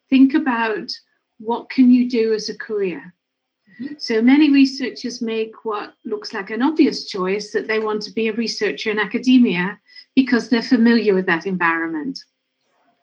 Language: English